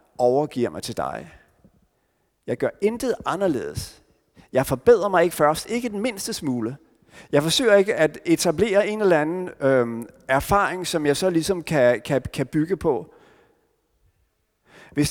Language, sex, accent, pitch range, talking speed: Danish, male, native, 130-180 Hz, 140 wpm